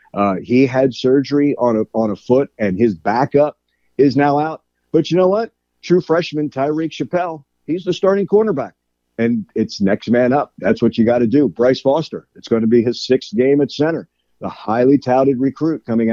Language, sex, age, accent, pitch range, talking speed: English, male, 50-69, American, 115-155 Hz, 200 wpm